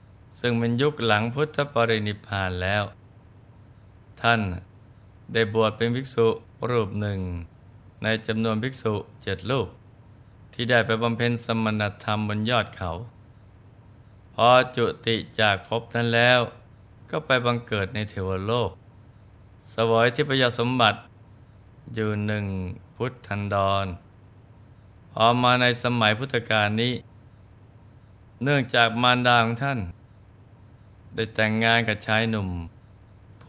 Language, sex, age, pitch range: Thai, male, 20-39, 105-115 Hz